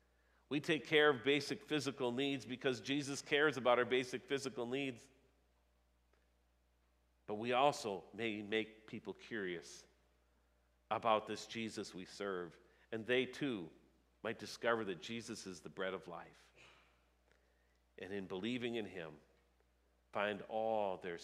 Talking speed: 135 wpm